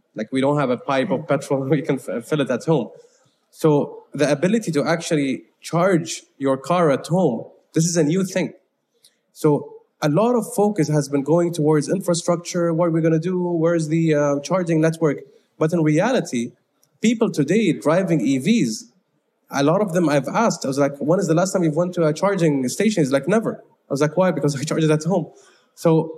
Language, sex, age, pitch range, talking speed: English, male, 20-39, 145-190 Hz, 210 wpm